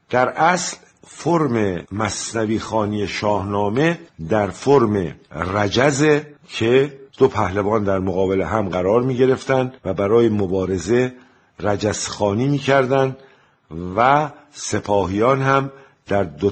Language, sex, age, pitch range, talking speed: Persian, male, 50-69, 95-130 Hz, 100 wpm